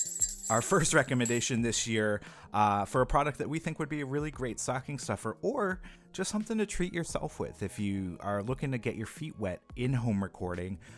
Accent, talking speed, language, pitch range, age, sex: American, 210 wpm, English, 95-120 Hz, 30-49, male